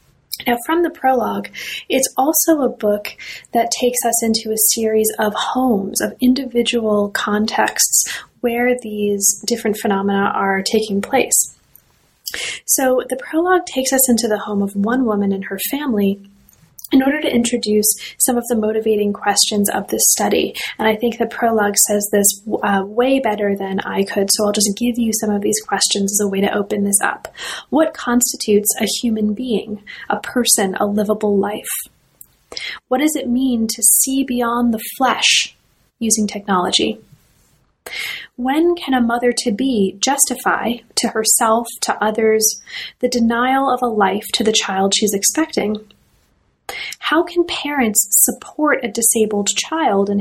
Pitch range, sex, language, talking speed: 205-245 Hz, female, English, 155 wpm